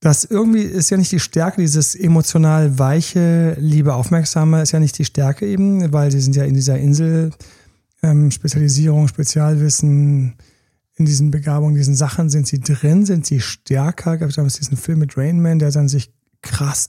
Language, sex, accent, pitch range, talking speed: German, male, German, 135-165 Hz, 180 wpm